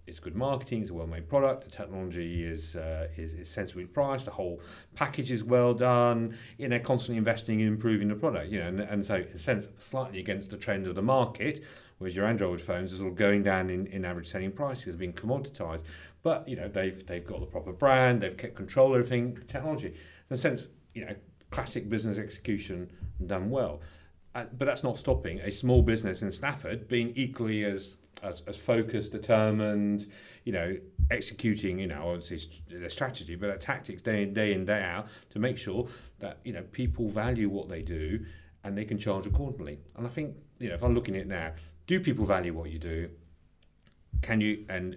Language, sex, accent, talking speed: English, male, British, 210 wpm